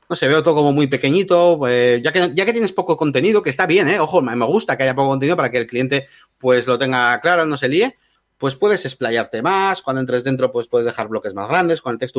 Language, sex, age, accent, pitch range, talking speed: Spanish, male, 30-49, Spanish, 125-175 Hz, 270 wpm